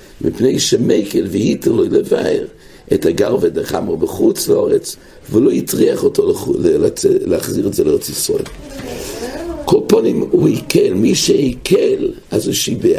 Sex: male